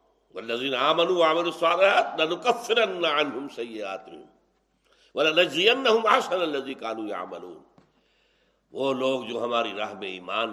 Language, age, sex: Urdu, 60-79, male